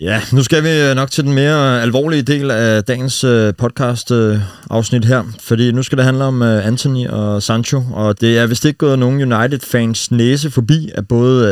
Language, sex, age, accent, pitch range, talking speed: Danish, male, 30-49, native, 105-130 Hz, 180 wpm